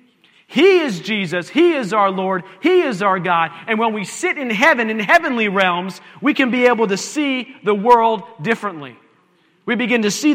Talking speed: 190 wpm